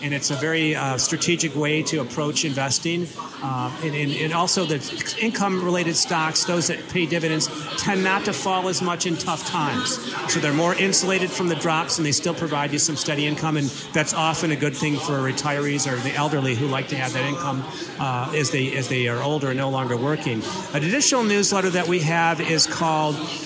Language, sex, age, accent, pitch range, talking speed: English, male, 40-59, American, 145-170 Hz, 210 wpm